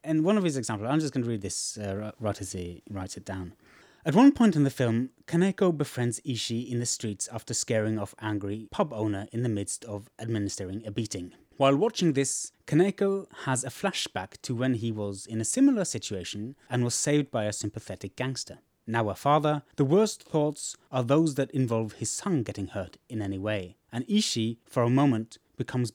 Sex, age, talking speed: male, 30-49, 205 wpm